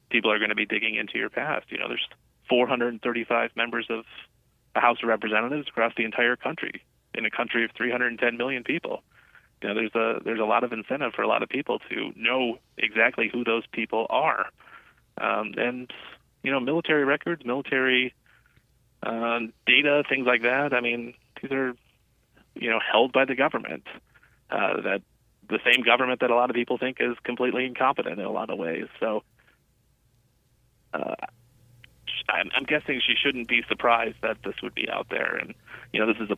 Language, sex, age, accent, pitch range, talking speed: English, male, 30-49, American, 115-125 Hz, 190 wpm